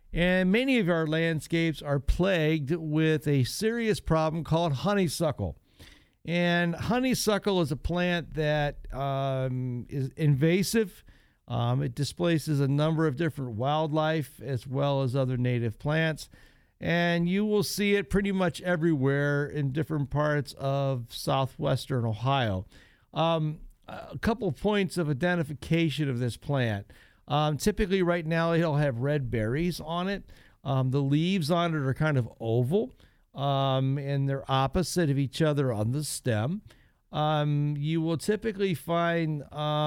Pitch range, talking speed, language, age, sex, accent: 135-175 Hz, 140 wpm, English, 50-69, male, American